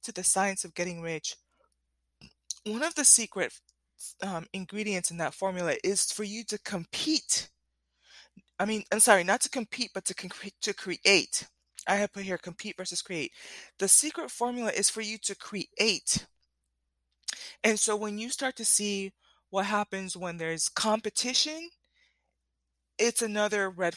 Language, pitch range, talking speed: English, 170-210 Hz, 155 wpm